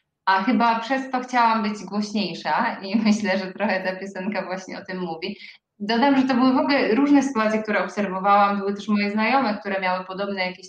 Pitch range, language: 185-225 Hz, Polish